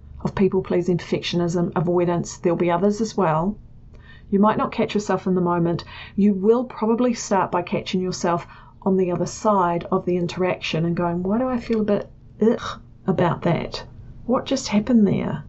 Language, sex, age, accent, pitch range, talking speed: English, female, 40-59, Australian, 175-210 Hz, 180 wpm